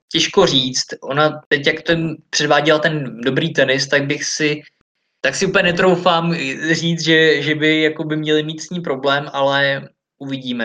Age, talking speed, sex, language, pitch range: 20-39, 170 wpm, male, Czech, 130-155 Hz